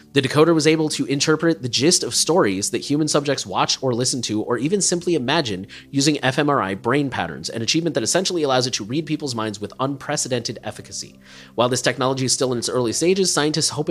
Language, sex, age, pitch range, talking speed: English, male, 30-49, 110-145 Hz, 210 wpm